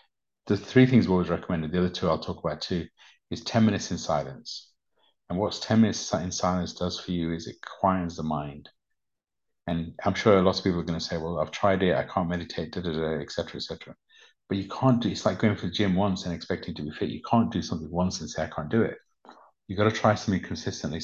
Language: English